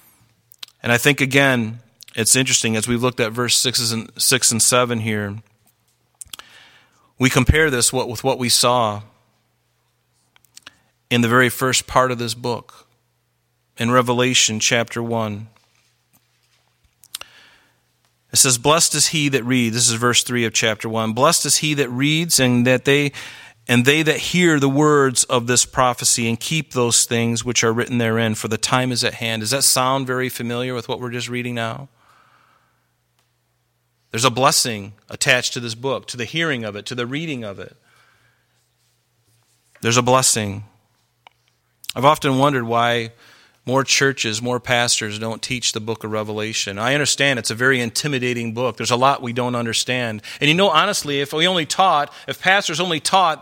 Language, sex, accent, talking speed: English, male, American, 170 wpm